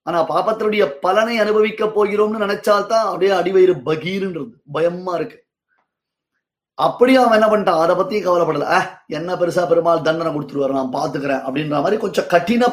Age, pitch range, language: 30-49, 165-210 Hz, Tamil